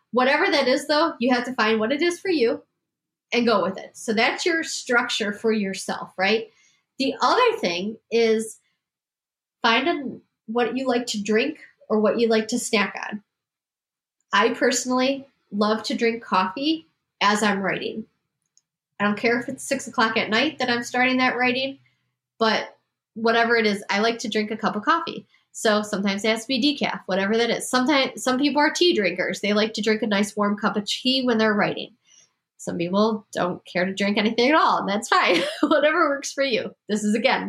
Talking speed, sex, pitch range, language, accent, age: 200 wpm, female, 205-255 Hz, English, American, 10-29